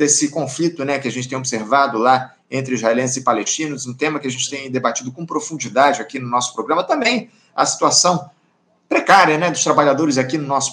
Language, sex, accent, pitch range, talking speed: Portuguese, male, Brazilian, 135-195 Hz, 200 wpm